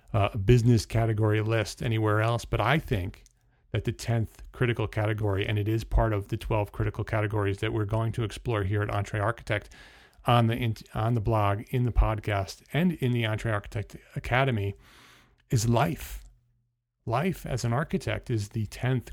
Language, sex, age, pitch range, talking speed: English, male, 40-59, 105-125 Hz, 175 wpm